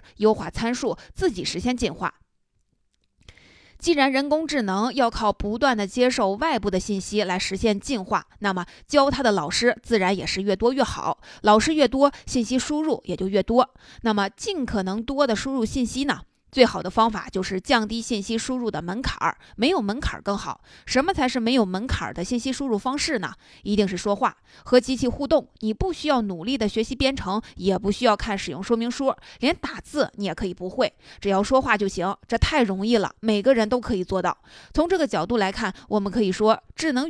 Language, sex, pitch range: Chinese, female, 200-260 Hz